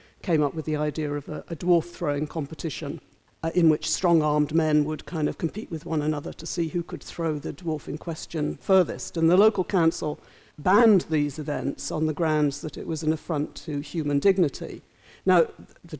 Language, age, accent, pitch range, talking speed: English, 50-69, British, 150-180 Hz, 195 wpm